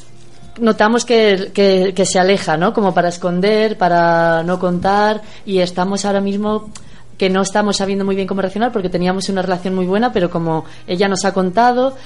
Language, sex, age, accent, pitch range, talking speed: Spanish, female, 20-39, Spanish, 180-210 Hz, 180 wpm